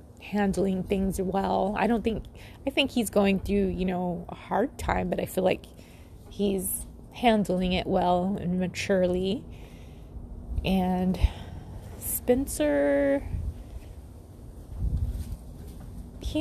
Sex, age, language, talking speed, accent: female, 20-39, English, 105 wpm, American